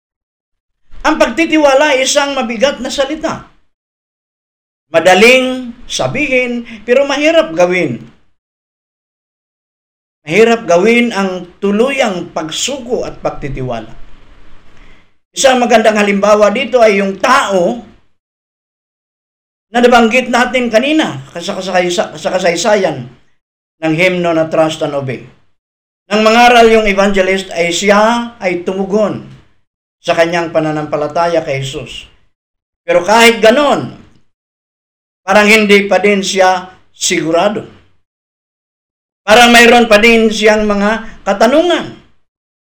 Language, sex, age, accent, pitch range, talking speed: Filipino, male, 50-69, native, 165-235 Hz, 90 wpm